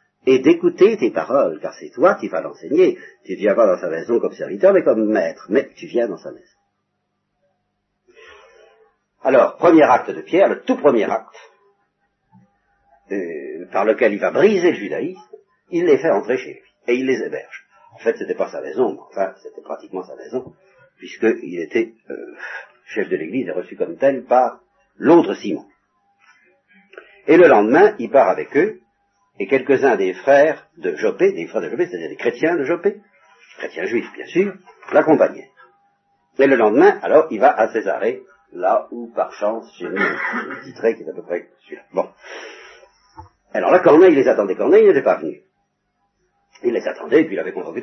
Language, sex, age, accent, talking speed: French, male, 50-69, French, 185 wpm